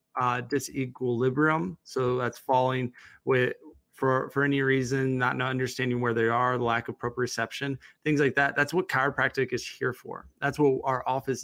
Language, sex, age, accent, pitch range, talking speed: English, male, 20-39, American, 125-140 Hz, 170 wpm